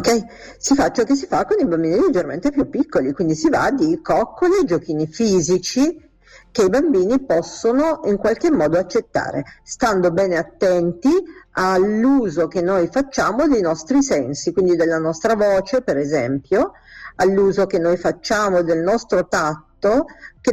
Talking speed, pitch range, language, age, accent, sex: 155 wpm, 165-230 Hz, Italian, 50-69, native, female